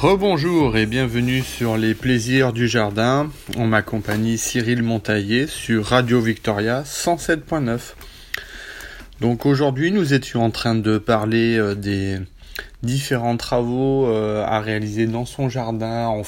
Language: French